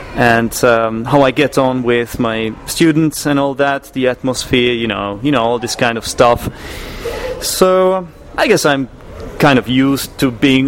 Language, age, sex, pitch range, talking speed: English, 30-49, male, 115-145 Hz, 180 wpm